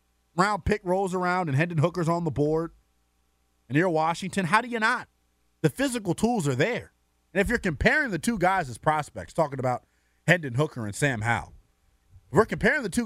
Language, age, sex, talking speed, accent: English, 30-49, male, 200 wpm, American